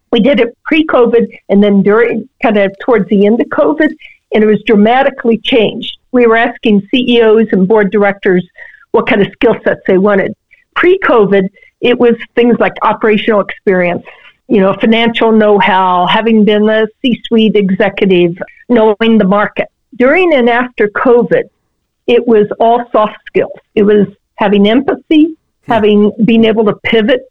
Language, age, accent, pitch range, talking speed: English, 50-69, American, 210-245 Hz, 165 wpm